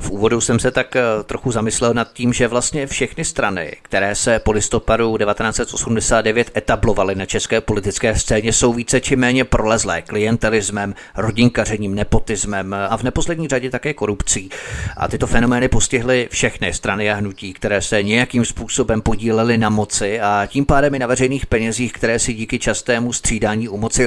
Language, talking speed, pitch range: Czech, 165 wpm, 105-120 Hz